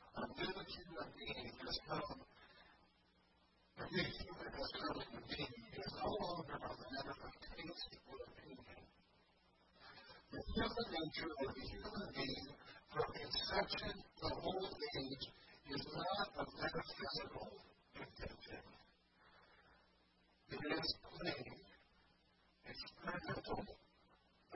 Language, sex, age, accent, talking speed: English, female, 40-59, American, 95 wpm